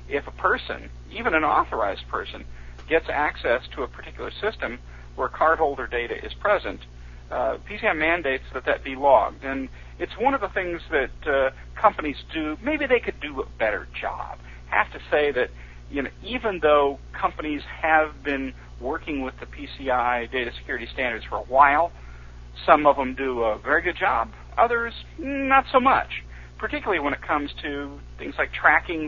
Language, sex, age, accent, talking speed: English, male, 50-69, American, 170 wpm